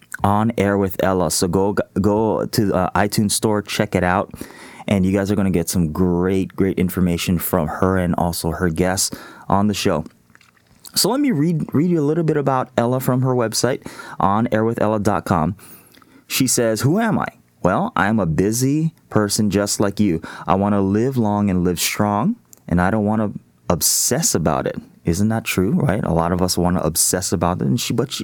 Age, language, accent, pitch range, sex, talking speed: 20-39, English, American, 90-110 Hz, male, 205 wpm